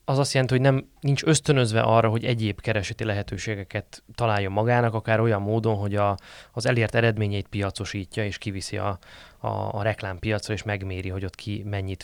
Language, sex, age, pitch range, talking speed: Hungarian, male, 20-39, 100-115 Hz, 160 wpm